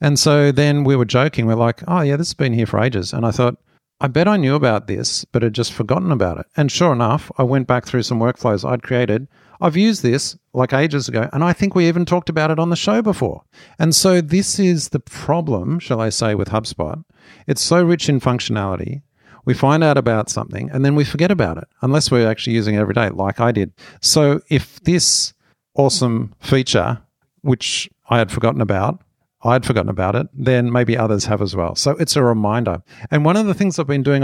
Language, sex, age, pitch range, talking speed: English, male, 50-69, 110-150 Hz, 225 wpm